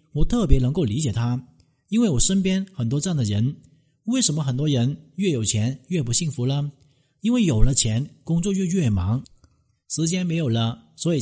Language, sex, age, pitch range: Chinese, male, 50-69, 120-160 Hz